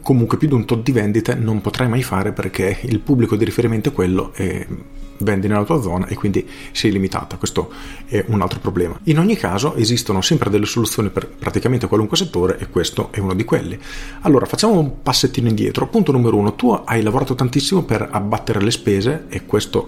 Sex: male